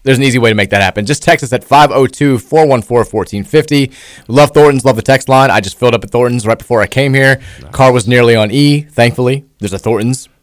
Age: 30-49